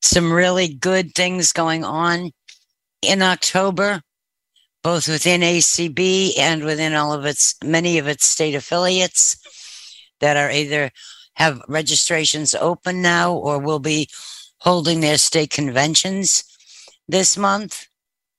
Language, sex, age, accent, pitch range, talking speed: English, female, 60-79, American, 150-180 Hz, 120 wpm